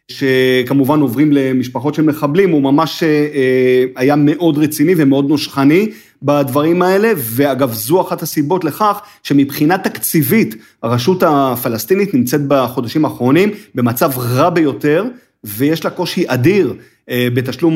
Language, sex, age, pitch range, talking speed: Hebrew, male, 30-49, 130-170 Hz, 115 wpm